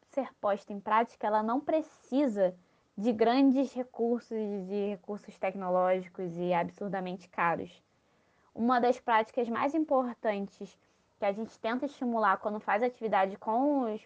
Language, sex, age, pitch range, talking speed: Portuguese, female, 10-29, 205-265 Hz, 130 wpm